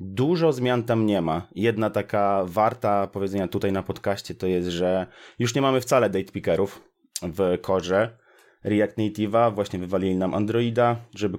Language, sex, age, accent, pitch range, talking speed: Polish, male, 30-49, native, 100-115 Hz, 160 wpm